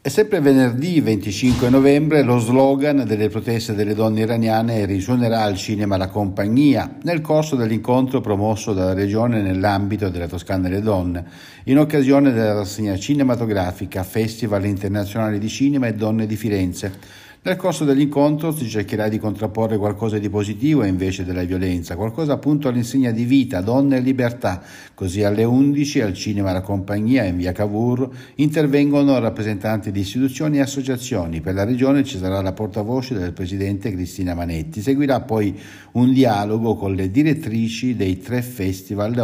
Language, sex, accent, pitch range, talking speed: Italian, male, native, 95-130 Hz, 150 wpm